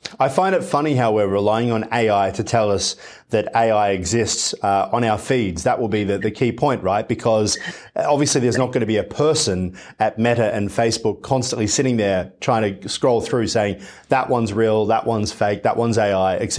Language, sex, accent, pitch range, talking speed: English, male, Australian, 105-125 Hz, 210 wpm